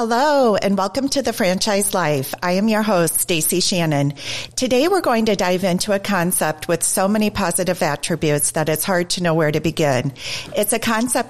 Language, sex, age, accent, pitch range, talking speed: English, female, 40-59, American, 155-200 Hz, 195 wpm